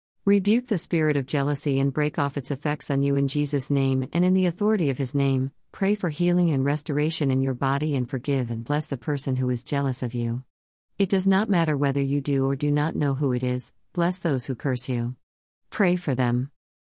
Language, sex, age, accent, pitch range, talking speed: English, female, 40-59, American, 130-150 Hz, 225 wpm